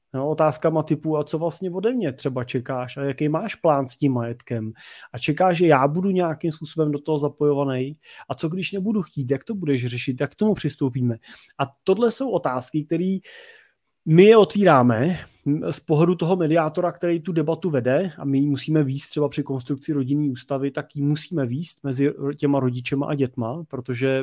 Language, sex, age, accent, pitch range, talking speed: Czech, male, 30-49, native, 130-155 Hz, 185 wpm